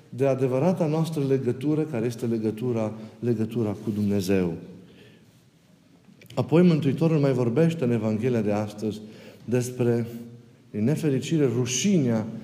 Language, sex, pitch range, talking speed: Romanian, male, 115-145 Hz, 100 wpm